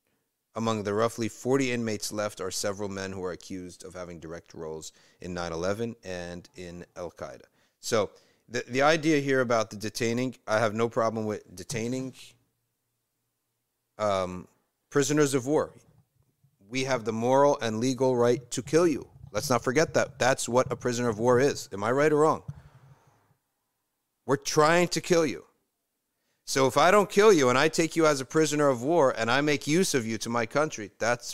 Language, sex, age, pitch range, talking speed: English, male, 40-59, 100-135 Hz, 180 wpm